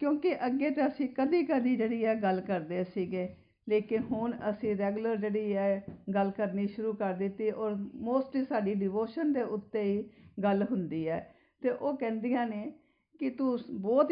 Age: 50-69